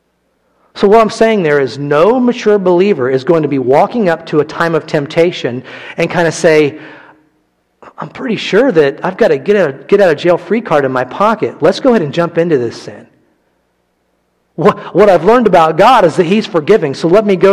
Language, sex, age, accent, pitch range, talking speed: English, male, 40-59, American, 150-210 Hz, 215 wpm